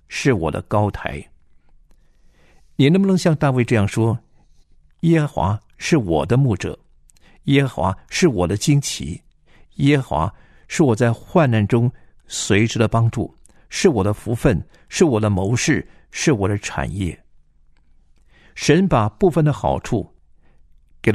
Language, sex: Chinese, male